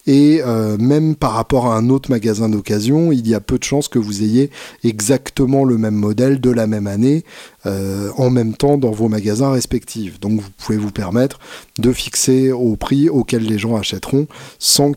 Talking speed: 195 wpm